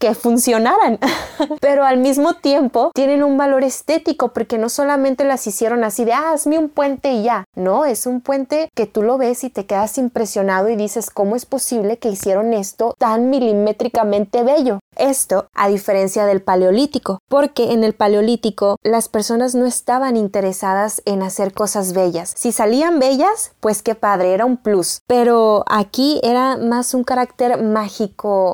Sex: female